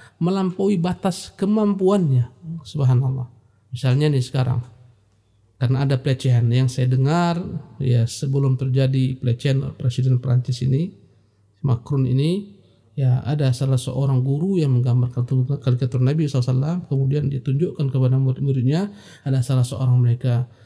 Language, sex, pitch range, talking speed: Indonesian, male, 125-155 Hz, 115 wpm